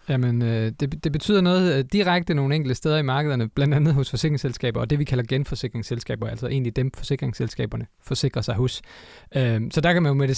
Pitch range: 120-150 Hz